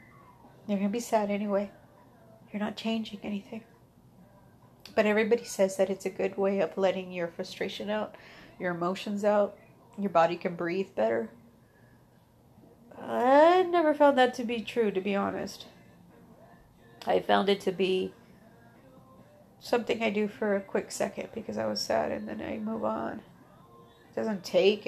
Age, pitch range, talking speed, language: 30-49, 190-230 Hz, 155 wpm, English